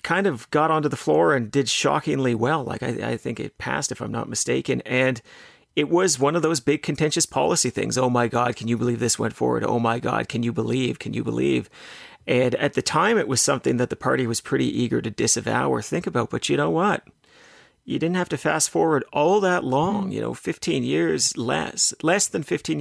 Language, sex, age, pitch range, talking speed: English, male, 40-59, 120-160 Hz, 230 wpm